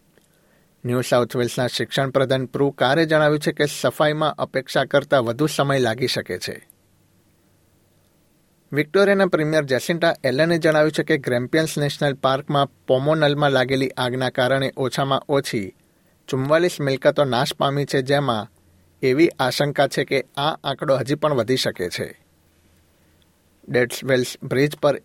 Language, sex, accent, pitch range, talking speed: Gujarati, male, native, 130-150 Hz, 125 wpm